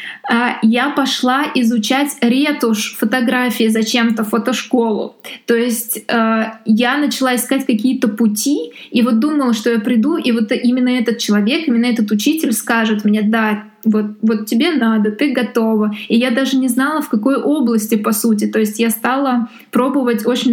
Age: 20-39